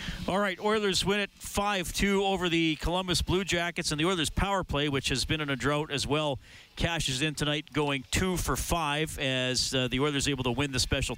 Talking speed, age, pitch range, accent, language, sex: 215 wpm, 40-59, 130-165 Hz, American, English, male